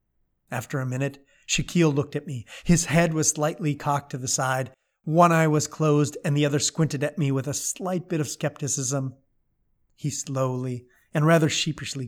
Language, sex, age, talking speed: English, male, 30-49, 180 wpm